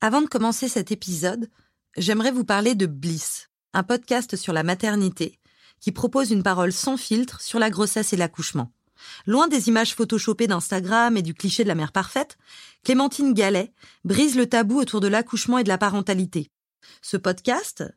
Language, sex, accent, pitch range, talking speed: French, female, French, 185-245 Hz, 175 wpm